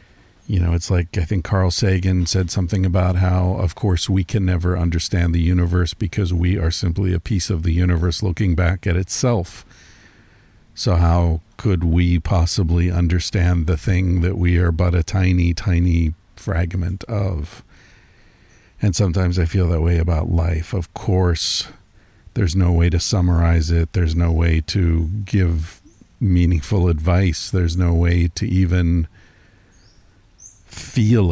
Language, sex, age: English, male, 50-69